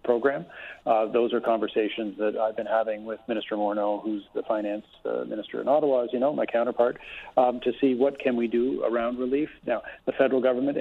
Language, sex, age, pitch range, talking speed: English, male, 40-59, 110-125 Hz, 205 wpm